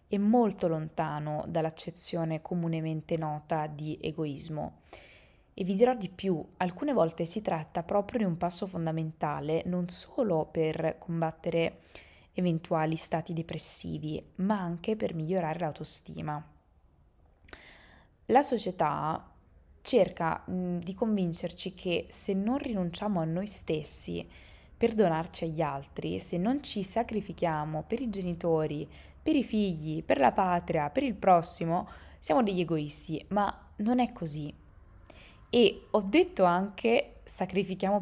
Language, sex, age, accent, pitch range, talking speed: Italian, female, 20-39, native, 155-195 Hz, 120 wpm